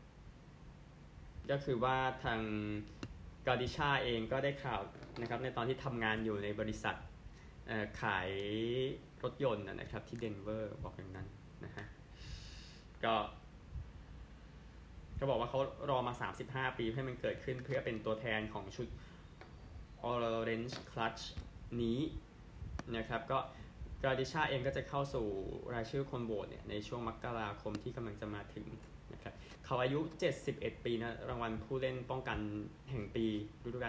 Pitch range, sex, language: 105-130 Hz, male, Thai